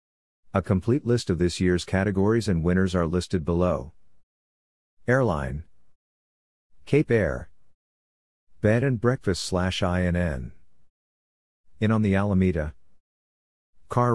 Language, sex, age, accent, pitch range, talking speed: English, male, 50-69, American, 70-110 Hz, 105 wpm